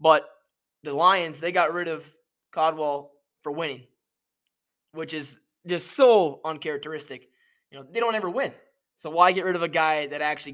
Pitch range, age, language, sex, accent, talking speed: 150-185 Hz, 20-39, English, male, American, 170 wpm